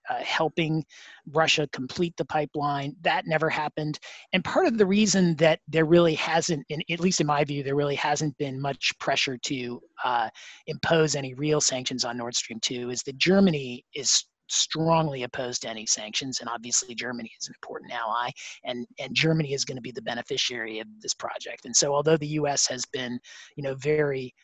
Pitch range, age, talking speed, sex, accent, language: 130-160 Hz, 40-59, 190 wpm, male, American, English